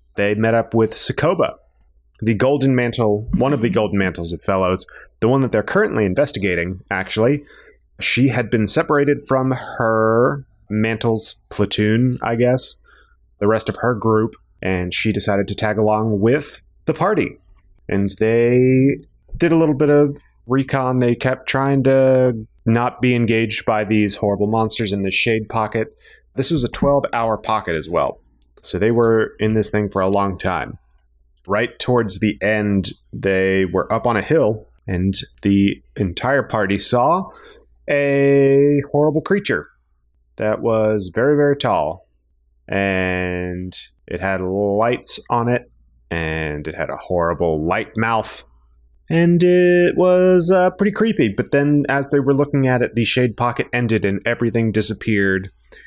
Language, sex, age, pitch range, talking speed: English, male, 30-49, 95-130 Hz, 155 wpm